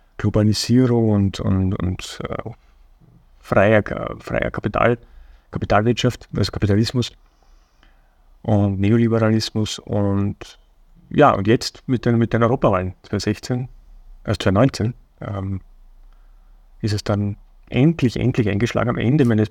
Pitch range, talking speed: 105-130 Hz, 110 wpm